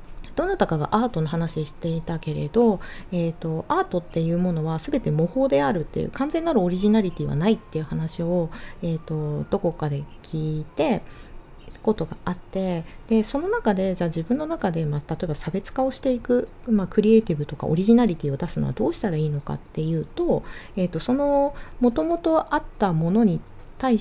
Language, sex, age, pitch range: Japanese, female, 40-59, 155-250 Hz